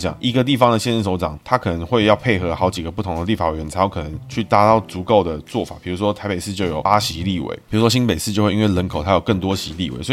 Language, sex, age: Chinese, male, 20-39